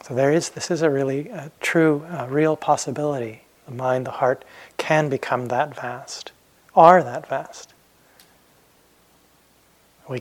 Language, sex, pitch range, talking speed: English, male, 120-140 Hz, 140 wpm